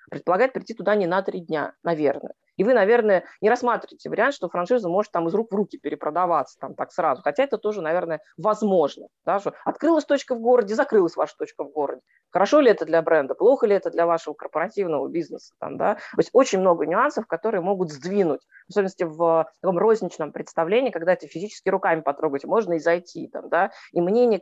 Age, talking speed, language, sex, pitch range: 20-39, 200 wpm, Russian, female, 165-220 Hz